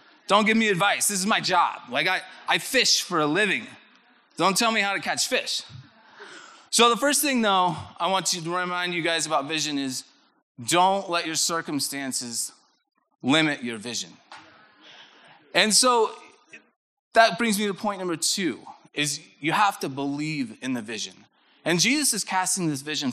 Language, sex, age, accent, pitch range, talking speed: English, male, 20-39, American, 155-235 Hz, 170 wpm